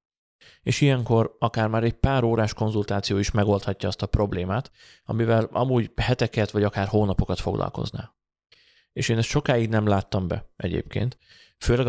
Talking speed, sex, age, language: 145 wpm, male, 30-49, Hungarian